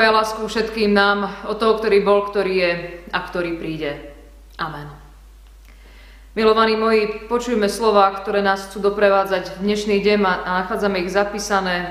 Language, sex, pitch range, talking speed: Slovak, female, 175-215 Hz, 145 wpm